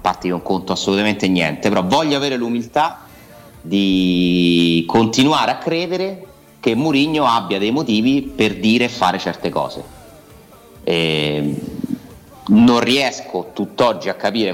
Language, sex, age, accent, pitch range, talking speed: Italian, male, 30-49, native, 90-120 Hz, 125 wpm